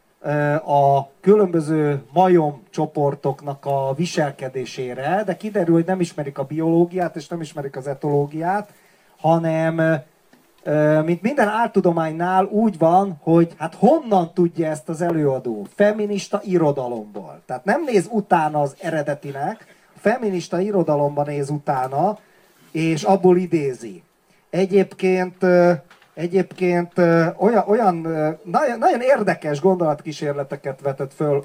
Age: 40-59